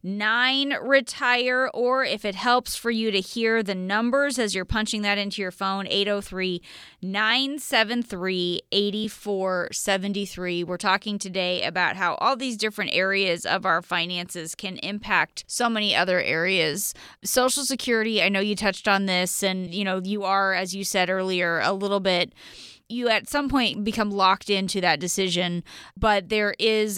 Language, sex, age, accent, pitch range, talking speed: English, female, 20-39, American, 180-220 Hz, 160 wpm